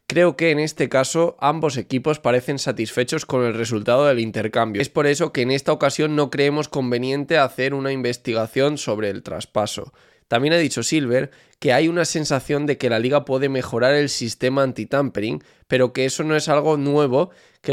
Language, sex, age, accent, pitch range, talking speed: Spanish, male, 20-39, Spanish, 115-150 Hz, 185 wpm